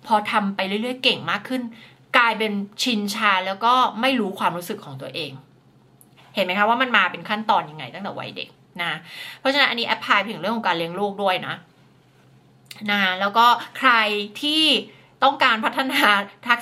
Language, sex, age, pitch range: Thai, female, 30-49, 190-240 Hz